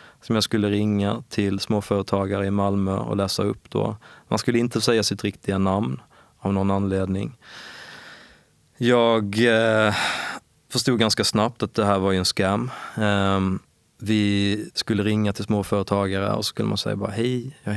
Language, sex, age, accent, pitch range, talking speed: Swedish, male, 20-39, native, 100-115 Hz, 160 wpm